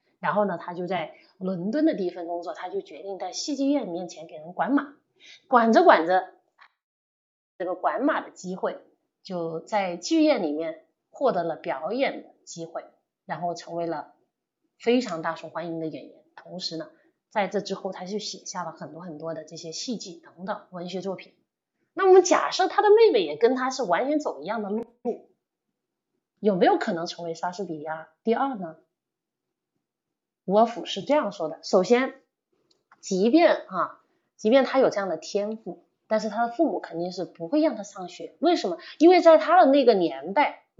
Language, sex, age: Chinese, female, 30-49